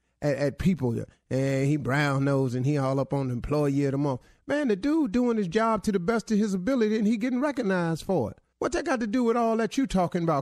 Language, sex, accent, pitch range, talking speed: English, male, American, 140-190 Hz, 265 wpm